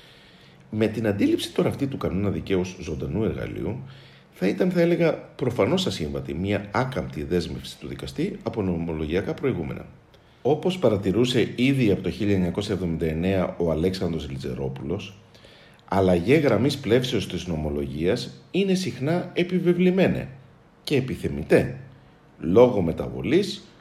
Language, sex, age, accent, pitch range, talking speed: Greek, male, 50-69, native, 80-135 Hz, 115 wpm